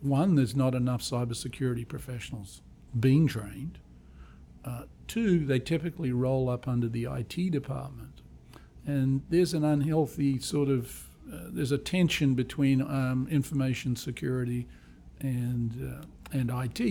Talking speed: 130 wpm